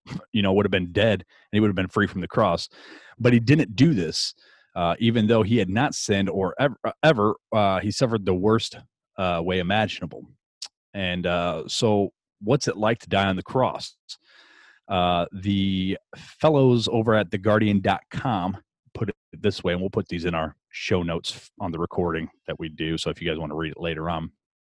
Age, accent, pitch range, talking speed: 30-49, American, 90-110 Hz, 205 wpm